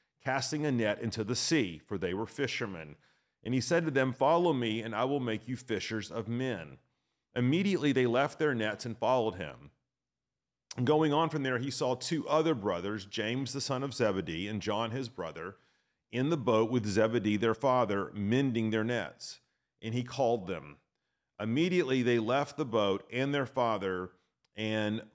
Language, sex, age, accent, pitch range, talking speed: English, male, 40-59, American, 105-130 Hz, 180 wpm